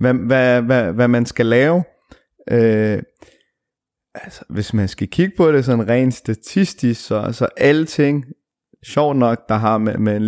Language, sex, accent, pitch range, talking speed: Danish, male, native, 115-140 Hz, 180 wpm